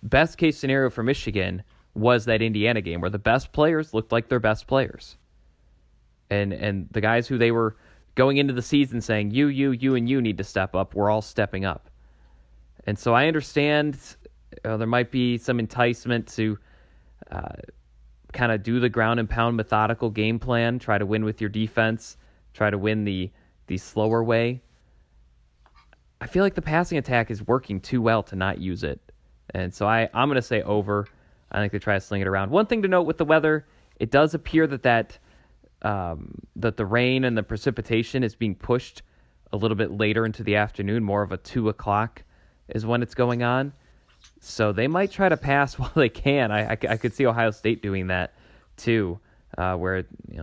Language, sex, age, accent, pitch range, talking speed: English, male, 30-49, American, 100-125 Hz, 195 wpm